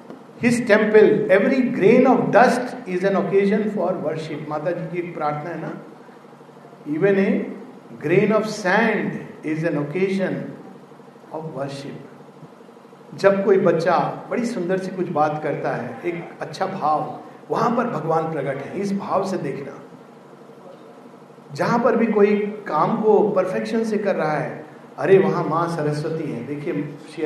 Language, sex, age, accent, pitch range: Hindi, male, 50-69, native, 160-210 Hz